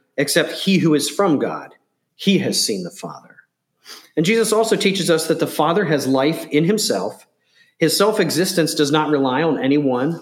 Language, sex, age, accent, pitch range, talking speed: English, male, 40-59, American, 130-170 Hz, 175 wpm